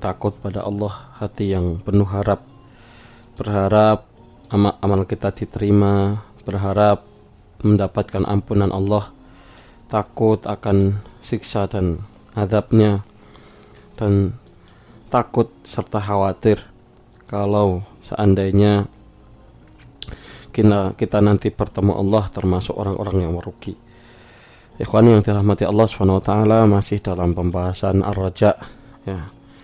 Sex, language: male, Indonesian